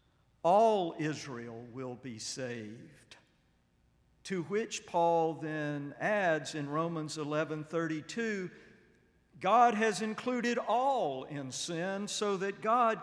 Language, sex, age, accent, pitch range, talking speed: English, male, 50-69, American, 135-185 Hz, 105 wpm